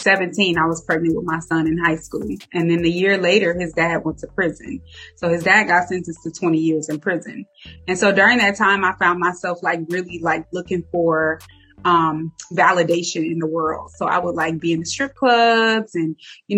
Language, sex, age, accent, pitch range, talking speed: English, female, 20-39, American, 165-195 Hz, 215 wpm